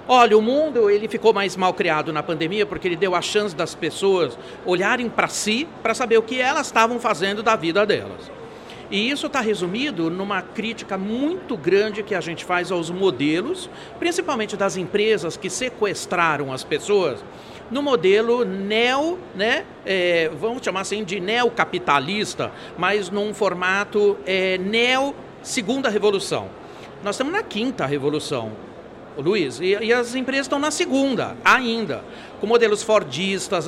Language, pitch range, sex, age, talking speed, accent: Portuguese, 185-240 Hz, male, 50-69, 145 wpm, Brazilian